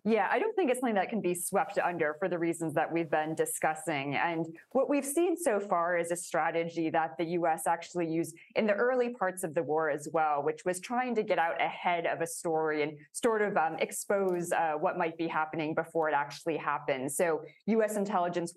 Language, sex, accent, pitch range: English, female, American, 160-195 Hz